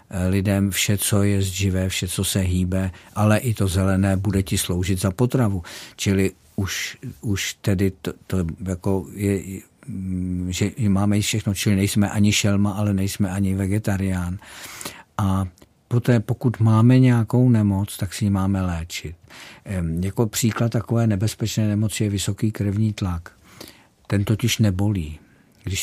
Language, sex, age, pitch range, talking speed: Czech, male, 50-69, 95-110 Hz, 140 wpm